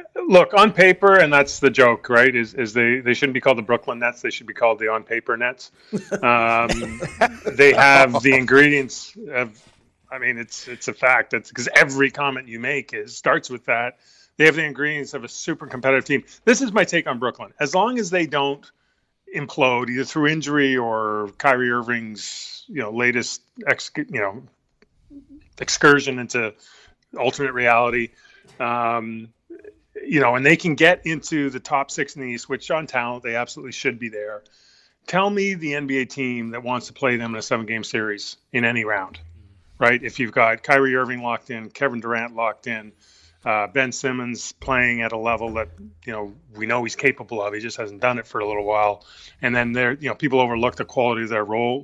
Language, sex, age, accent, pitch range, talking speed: English, male, 30-49, American, 115-140 Hz, 200 wpm